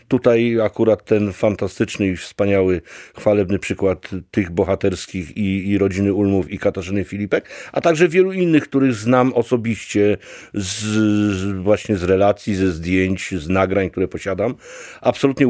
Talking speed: 140 wpm